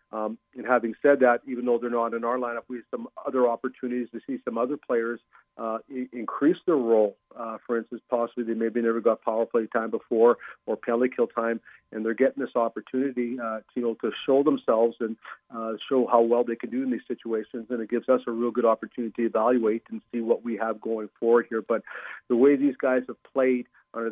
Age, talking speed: 40-59, 230 wpm